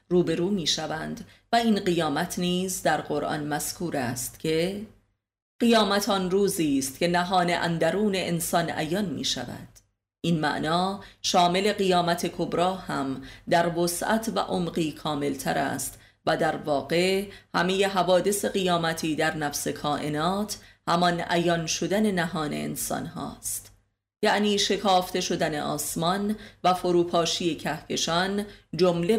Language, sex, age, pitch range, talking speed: Persian, female, 30-49, 150-190 Hz, 115 wpm